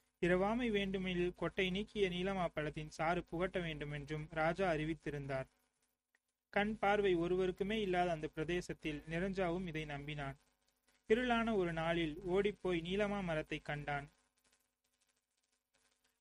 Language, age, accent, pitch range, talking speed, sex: Tamil, 30-49, native, 150-195 Hz, 105 wpm, male